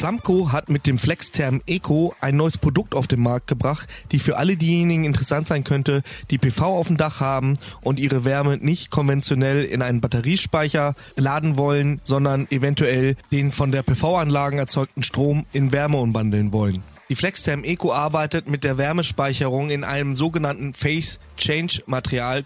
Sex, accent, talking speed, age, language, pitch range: male, German, 165 wpm, 20-39, German, 135-155 Hz